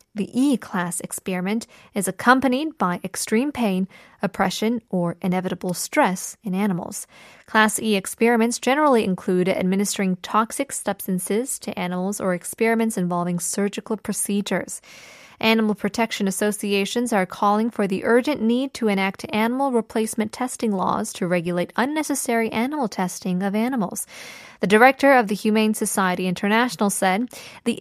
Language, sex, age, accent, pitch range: Korean, female, 10-29, American, 195-235 Hz